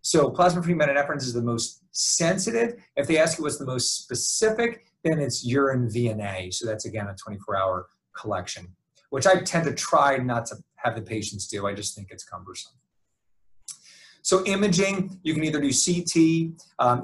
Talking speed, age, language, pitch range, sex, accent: 175 wpm, 30-49, English, 115-165 Hz, male, American